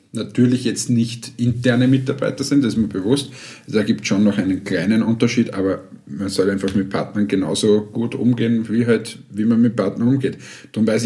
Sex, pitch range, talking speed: male, 110-130 Hz, 195 wpm